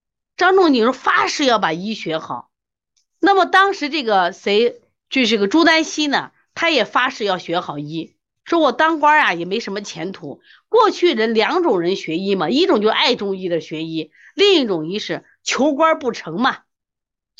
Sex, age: female, 30-49